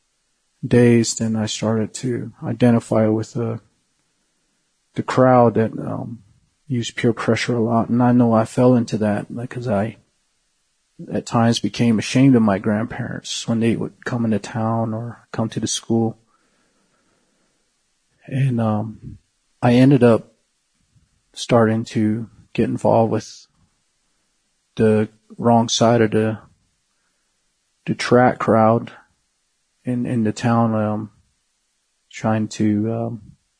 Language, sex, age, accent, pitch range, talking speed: English, male, 40-59, American, 110-120 Hz, 125 wpm